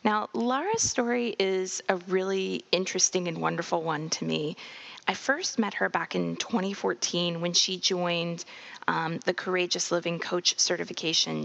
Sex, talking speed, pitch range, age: female, 145 wpm, 175-220 Hz, 20-39